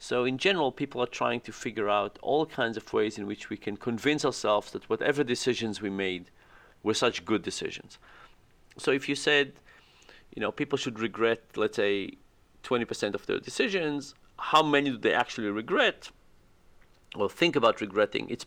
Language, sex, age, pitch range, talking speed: English, male, 40-59, 105-140 Hz, 175 wpm